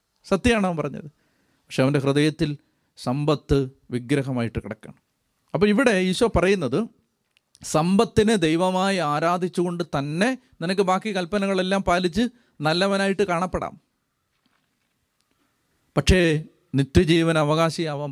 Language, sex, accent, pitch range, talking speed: Malayalam, male, native, 145-195 Hz, 85 wpm